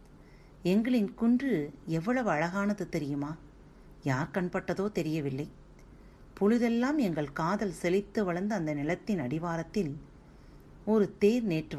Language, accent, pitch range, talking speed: Tamil, native, 140-200 Hz, 100 wpm